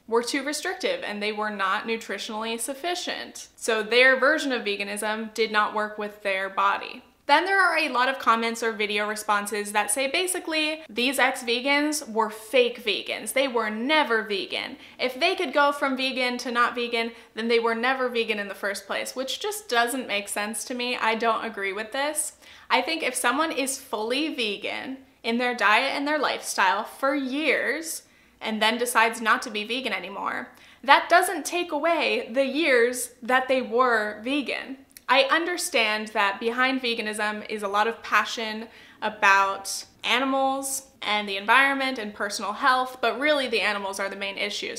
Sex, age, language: female, 20-39, English